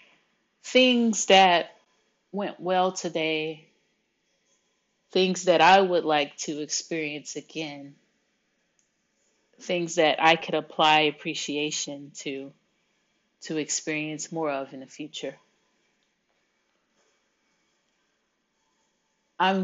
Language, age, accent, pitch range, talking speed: English, 30-49, American, 150-180 Hz, 85 wpm